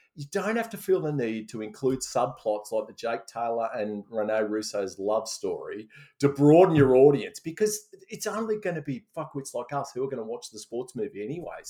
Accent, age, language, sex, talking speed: Australian, 30-49, English, male, 210 wpm